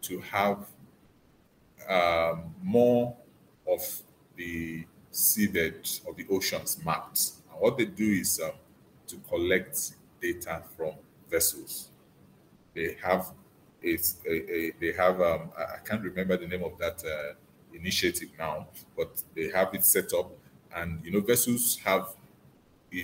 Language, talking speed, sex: English, 130 wpm, male